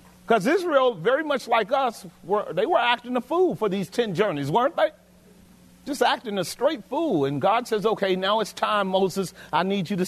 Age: 40-59